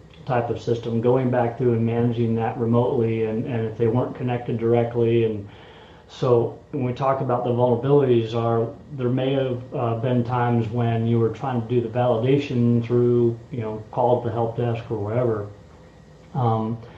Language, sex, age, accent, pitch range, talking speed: English, male, 30-49, American, 115-125 Hz, 175 wpm